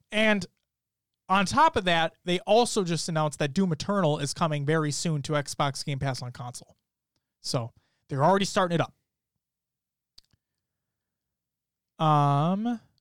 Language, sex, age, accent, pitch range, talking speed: English, male, 20-39, American, 150-220 Hz, 135 wpm